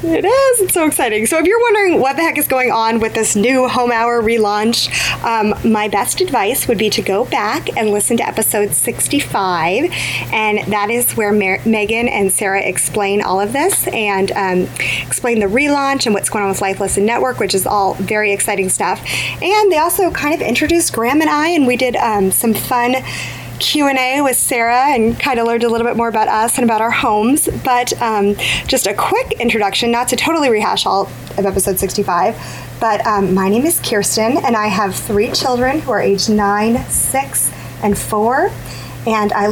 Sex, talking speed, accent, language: female, 200 wpm, American, English